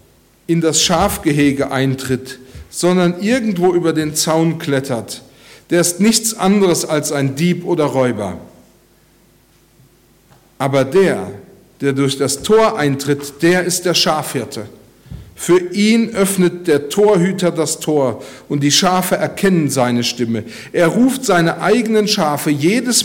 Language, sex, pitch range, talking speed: German, male, 140-190 Hz, 130 wpm